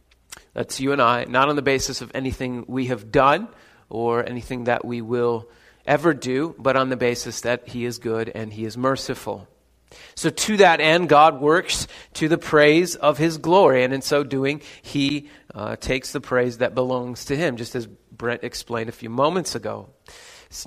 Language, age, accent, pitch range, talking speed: English, 30-49, American, 120-145 Hz, 190 wpm